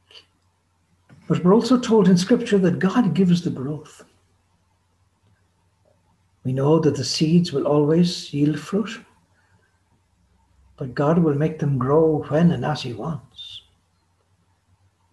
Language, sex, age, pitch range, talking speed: English, male, 60-79, 90-150 Hz, 125 wpm